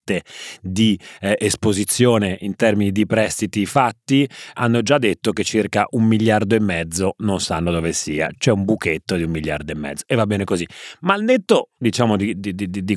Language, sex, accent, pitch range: Italian, male, native, 95-115 Hz